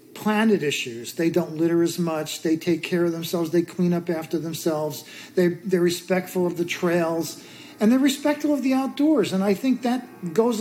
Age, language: 50-69, English